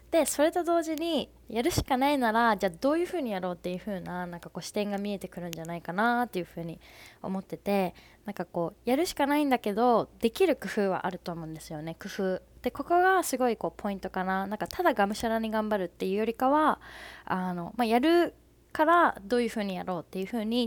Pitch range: 180-240 Hz